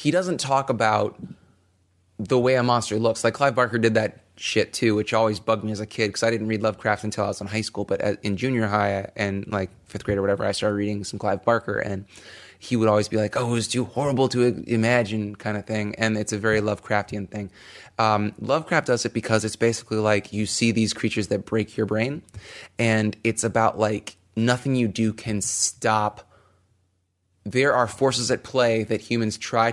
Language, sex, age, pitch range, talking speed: English, male, 20-39, 105-115 Hz, 210 wpm